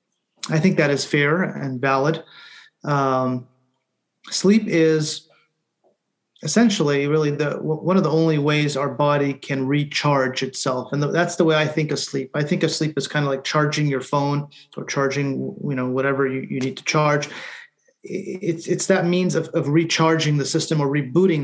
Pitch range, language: 135-165 Hz, English